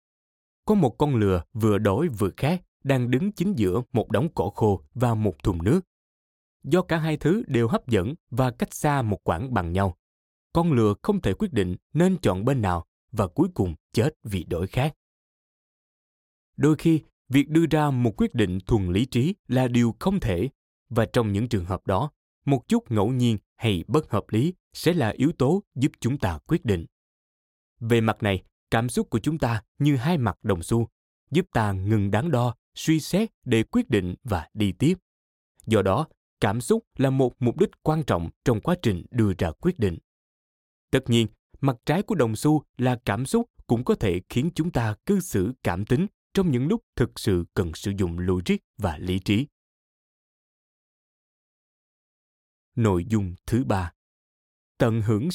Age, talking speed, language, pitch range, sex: 20-39, 185 wpm, Vietnamese, 100-145 Hz, male